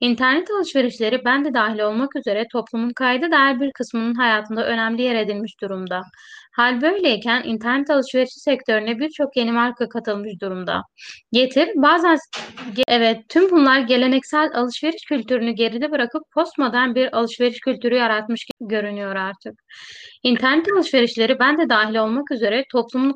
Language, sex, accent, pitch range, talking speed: Turkish, female, native, 225-275 Hz, 130 wpm